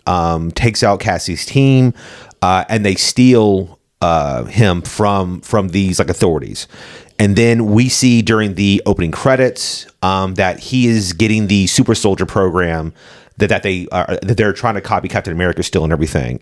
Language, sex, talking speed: English, male, 170 wpm